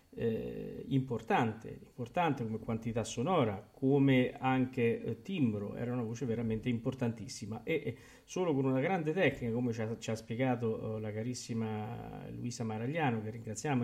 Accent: native